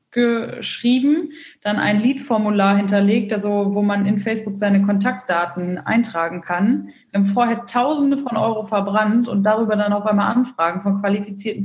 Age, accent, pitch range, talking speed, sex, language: 20-39, German, 195-235 Hz, 145 wpm, female, German